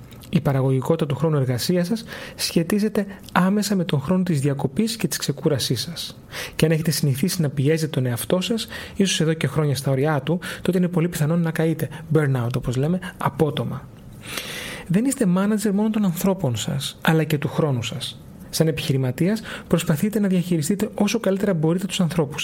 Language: Greek